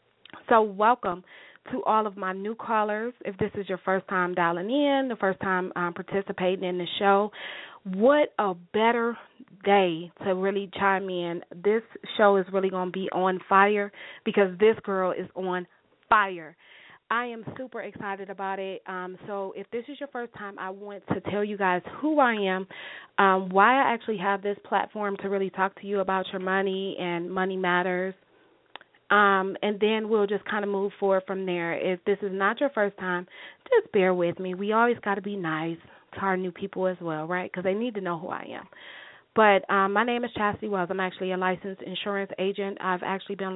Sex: female